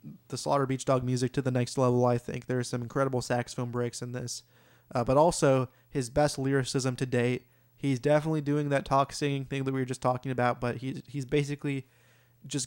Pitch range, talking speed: 120-140 Hz, 210 wpm